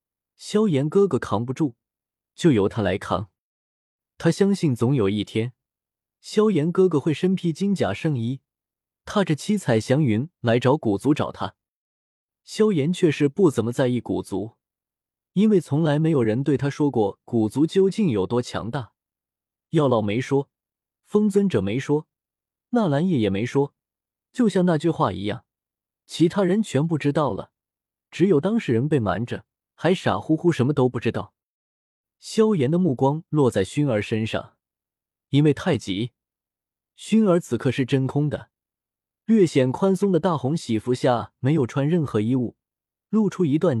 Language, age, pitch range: Chinese, 20-39, 115-170 Hz